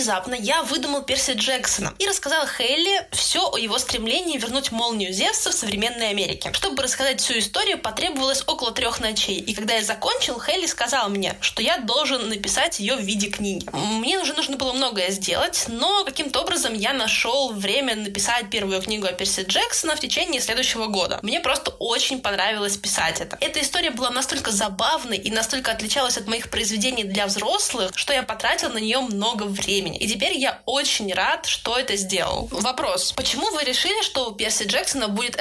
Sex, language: female, Russian